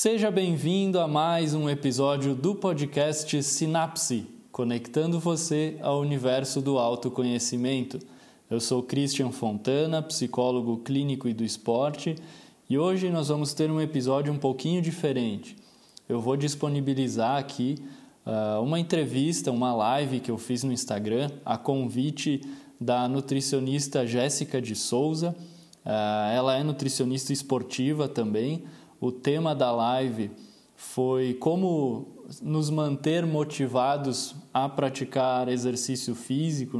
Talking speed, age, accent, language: 115 wpm, 20-39, Brazilian, Portuguese